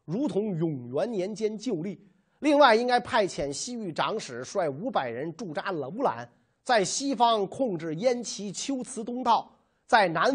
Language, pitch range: Chinese, 170-260 Hz